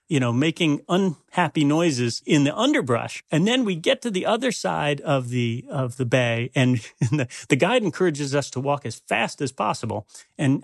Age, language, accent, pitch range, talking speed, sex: 40-59, English, American, 130-170 Hz, 190 wpm, male